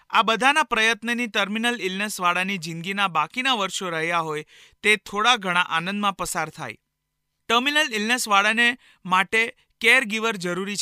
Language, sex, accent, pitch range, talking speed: Gujarati, male, native, 185-240 Hz, 105 wpm